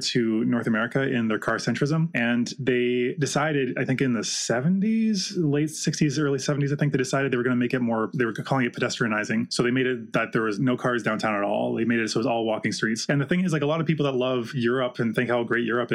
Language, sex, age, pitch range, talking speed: English, male, 20-39, 120-145 Hz, 275 wpm